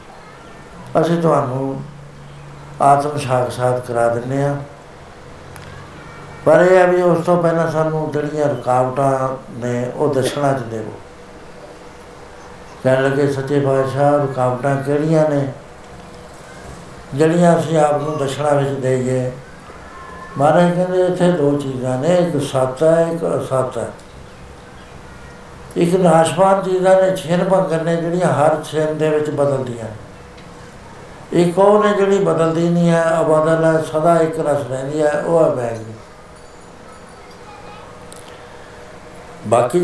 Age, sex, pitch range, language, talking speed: 60-79, male, 130-160 Hz, Punjabi, 120 wpm